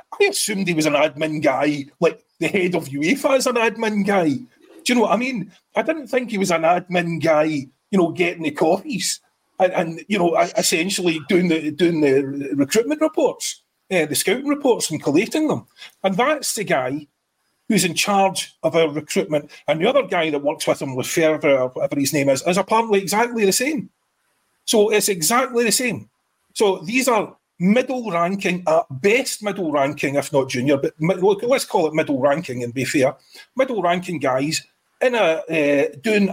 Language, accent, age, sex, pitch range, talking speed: English, British, 40-59, male, 145-210 Hz, 180 wpm